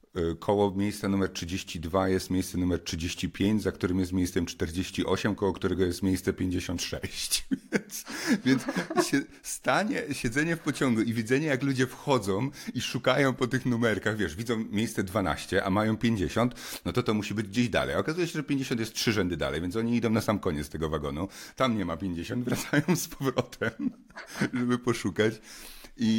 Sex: male